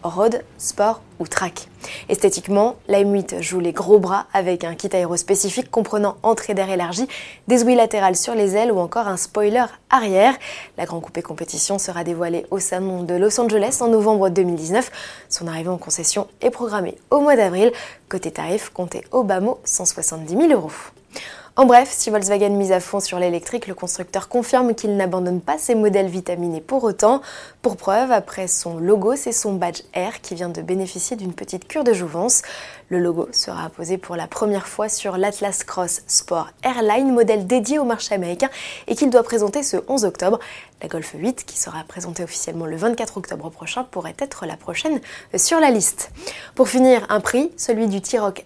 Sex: female